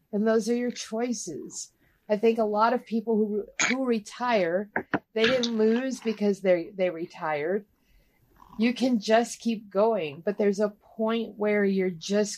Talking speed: 160 wpm